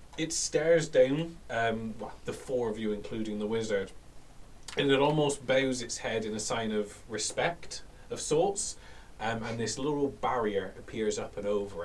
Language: English